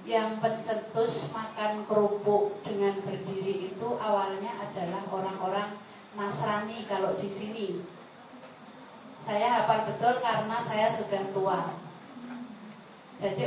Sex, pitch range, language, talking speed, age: female, 200-235 Hz, Malay, 100 wpm, 30-49